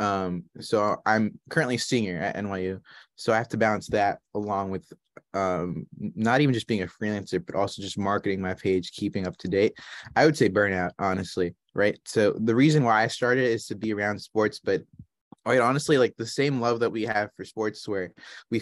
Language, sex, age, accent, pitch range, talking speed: English, male, 20-39, American, 100-115 Hz, 200 wpm